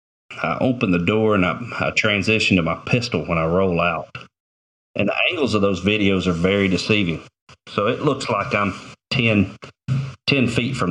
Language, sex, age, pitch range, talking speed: English, male, 40-59, 85-110 Hz, 180 wpm